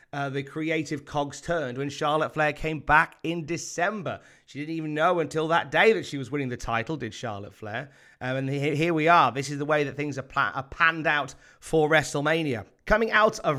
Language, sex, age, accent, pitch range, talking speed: English, male, 30-49, British, 120-155 Hz, 210 wpm